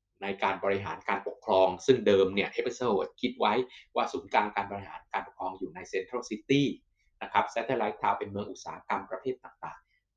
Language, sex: Thai, male